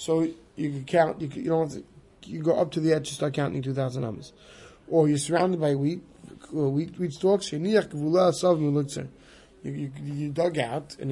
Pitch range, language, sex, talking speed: 145-180 Hz, English, male, 195 wpm